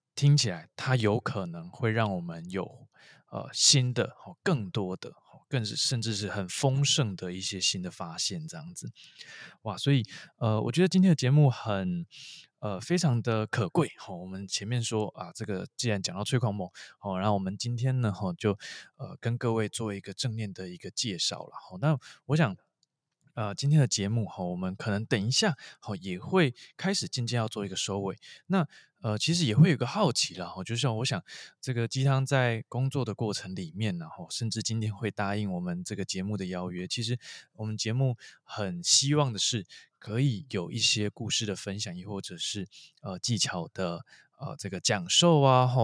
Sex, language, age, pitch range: male, Chinese, 20-39, 100-140 Hz